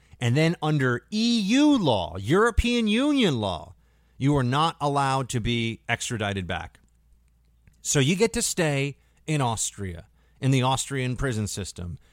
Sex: male